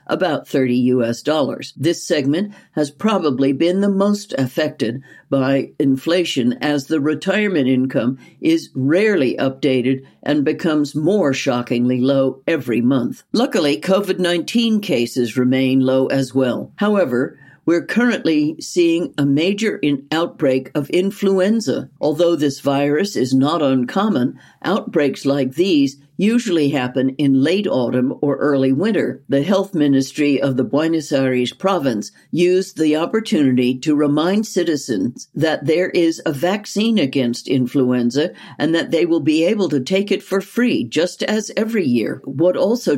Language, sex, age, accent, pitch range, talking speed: English, female, 60-79, American, 135-185 Hz, 140 wpm